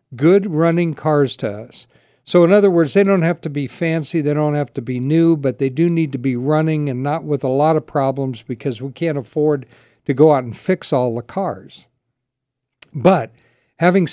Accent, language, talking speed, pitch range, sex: American, English, 210 wpm, 130-165 Hz, male